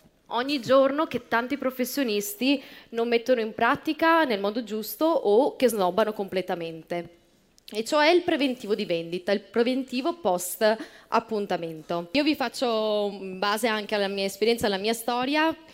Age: 20-39